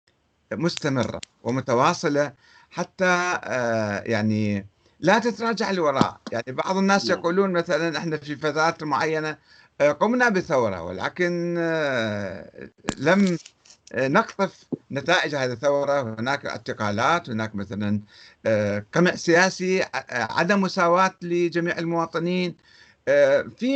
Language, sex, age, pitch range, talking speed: Arabic, male, 60-79, 115-175 Hz, 90 wpm